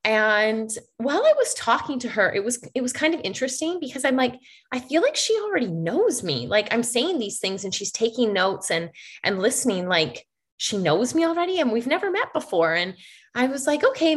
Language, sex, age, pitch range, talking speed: English, female, 20-39, 225-315 Hz, 215 wpm